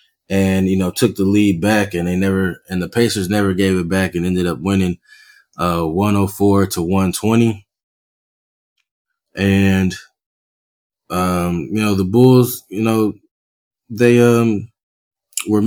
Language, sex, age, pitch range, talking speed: English, male, 20-39, 90-110 Hz, 140 wpm